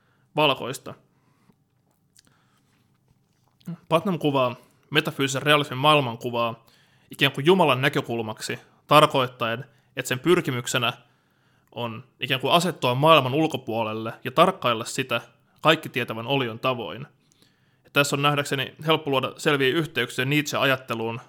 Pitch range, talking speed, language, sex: 125-150 Hz, 100 wpm, Finnish, male